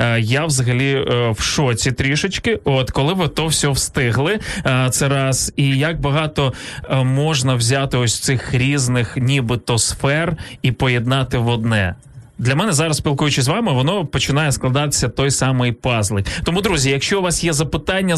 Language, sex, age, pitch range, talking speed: Ukrainian, male, 20-39, 130-165 Hz, 150 wpm